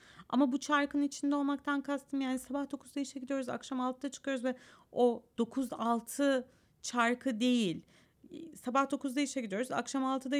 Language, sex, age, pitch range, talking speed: Turkish, female, 30-49, 220-280 Hz, 150 wpm